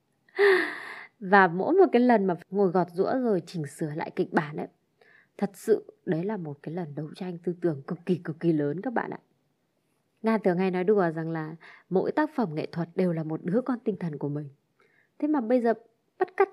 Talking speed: 225 wpm